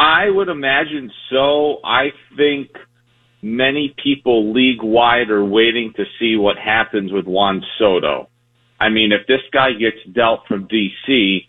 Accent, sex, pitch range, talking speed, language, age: American, male, 105-125 Hz, 140 wpm, English, 40-59